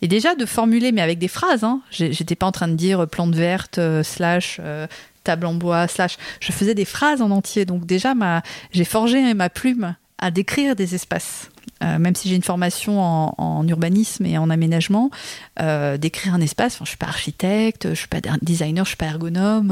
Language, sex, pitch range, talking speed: French, female, 175-220 Hz, 230 wpm